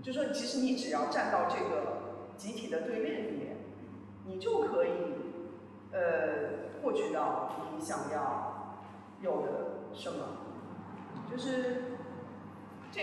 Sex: female